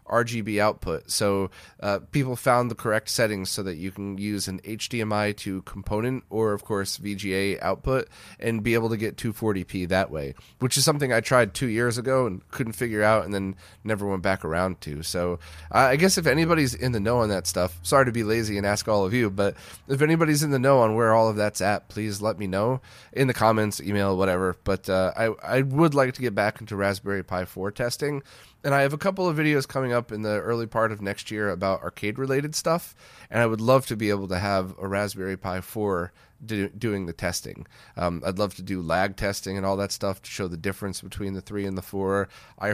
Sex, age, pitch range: male, 30-49, 95-120 Hz